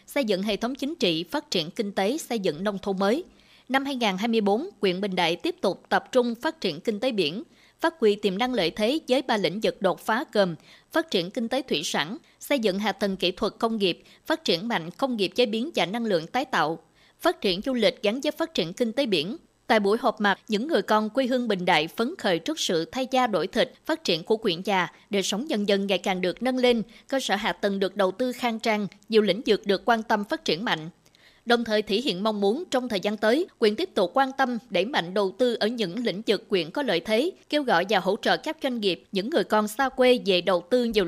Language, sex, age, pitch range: Vietnamese, female, 20-39, 195-250 Hz